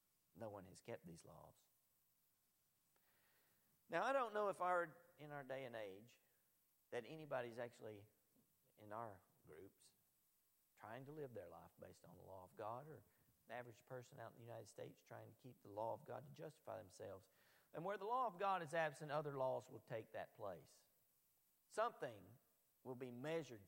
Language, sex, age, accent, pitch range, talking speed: English, male, 50-69, American, 115-160 Hz, 180 wpm